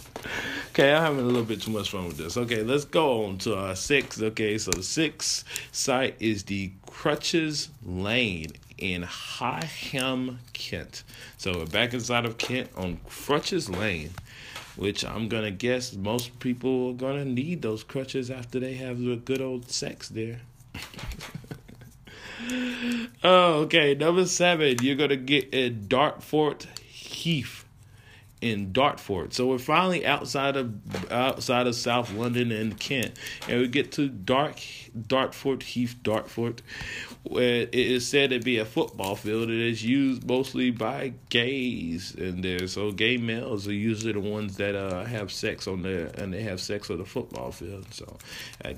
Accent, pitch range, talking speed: American, 105-130 Hz, 160 wpm